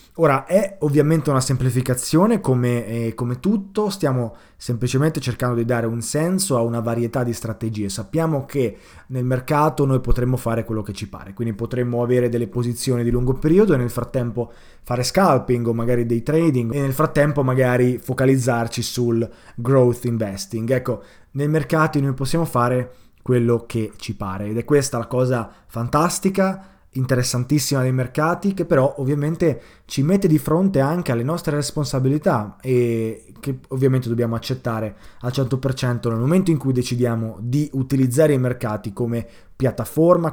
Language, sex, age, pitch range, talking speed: Italian, male, 20-39, 120-155 Hz, 155 wpm